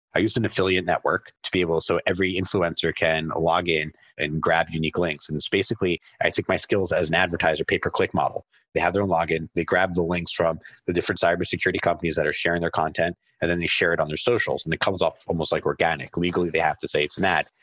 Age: 30-49